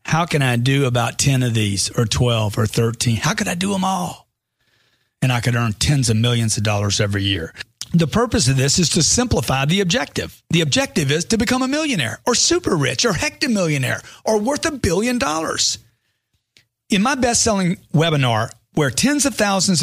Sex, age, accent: male, 40-59, American